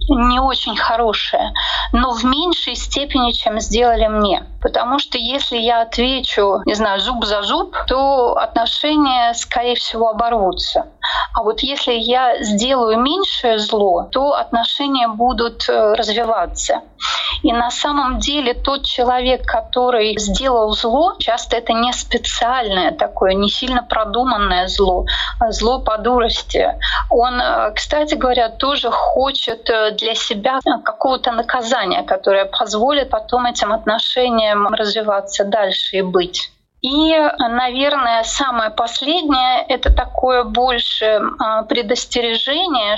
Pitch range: 225-270 Hz